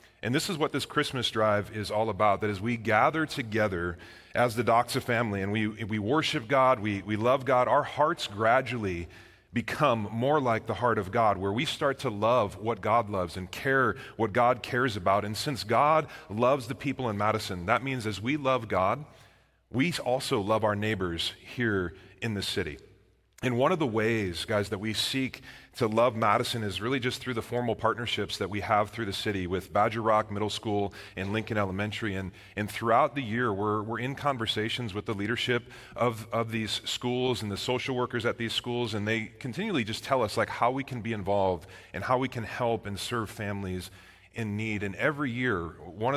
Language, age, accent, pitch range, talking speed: English, 30-49, American, 105-125 Hz, 205 wpm